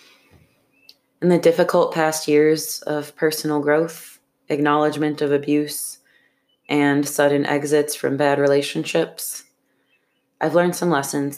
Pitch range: 145-175 Hz